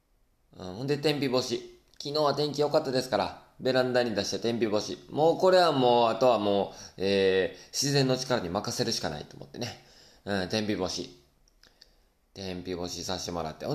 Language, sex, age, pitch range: Japanese, male, 20-39, 90-130 Hz